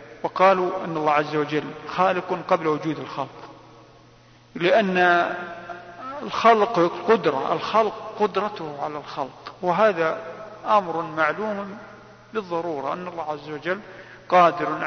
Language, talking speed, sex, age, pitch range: Arabic, 100 wpm, male, 50-69, 150-200 Hz